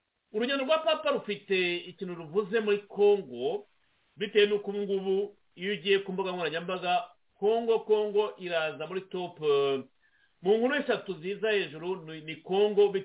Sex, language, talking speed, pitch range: male, English, 135 wpm, 175-215 Hz